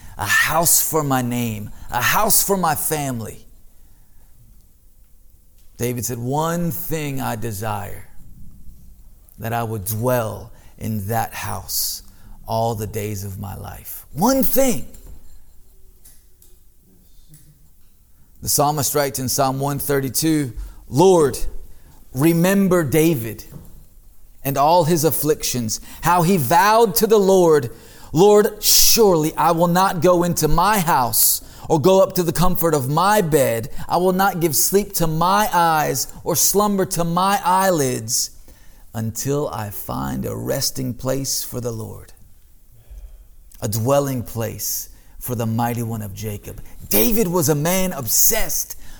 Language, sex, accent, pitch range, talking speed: English, male, American, 105-180 Hz, 125 wpm